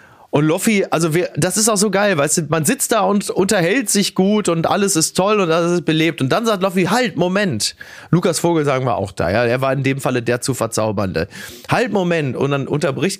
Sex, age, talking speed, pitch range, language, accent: male, 30-49, 235 wpm, 140-190 Hz, German, German